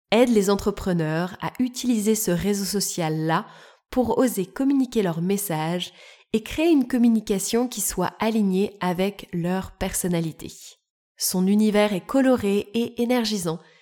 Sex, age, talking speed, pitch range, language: female, 20-39, 125 wpm, 180-245 Hz, French